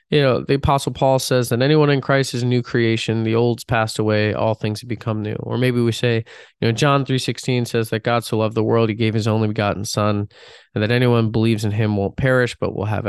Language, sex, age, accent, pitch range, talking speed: English, male, 20-39, American, 105-125 Hz, 255 wpm